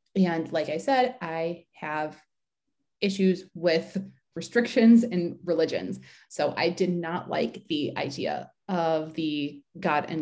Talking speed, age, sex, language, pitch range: 130 wpm, 20-39, female, English, 155-190 Hz